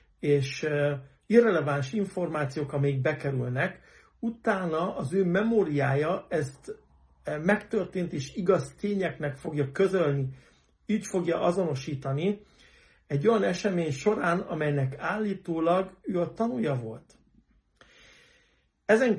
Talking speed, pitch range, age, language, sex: 95 wpm, 140-185 Hz, 60-79, Hungarian, male